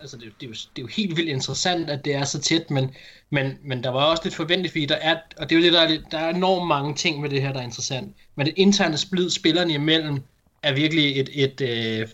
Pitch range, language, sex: 135-165 Hz, Danish, male